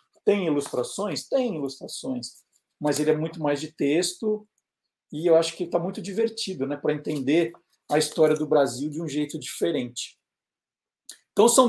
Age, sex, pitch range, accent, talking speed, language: 50-69, male, 155-215 Hz, Brazilian, 160 wpm, Portuguese